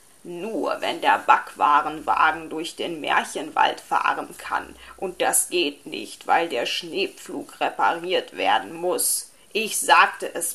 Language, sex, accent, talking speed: German, female, German, 125 wpm